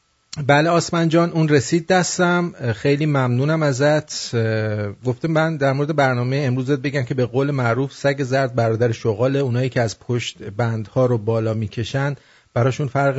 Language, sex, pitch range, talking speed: English, male, 115-150 Hz, 150 wpm